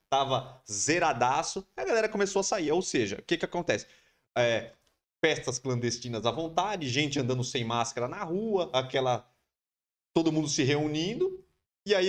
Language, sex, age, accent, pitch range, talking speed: Portuguese, male, 30-49, Brazilian, 110-165 Hz, 155 wpm